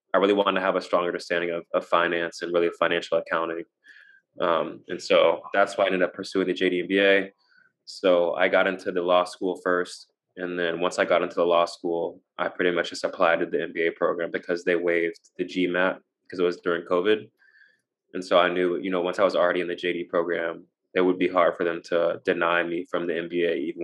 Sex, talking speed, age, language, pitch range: male, 225 wpm, 20-39, English, 85-90 Hz